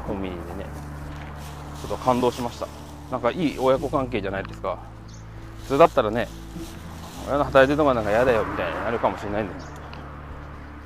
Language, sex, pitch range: Japanese, male, 85-110 Hz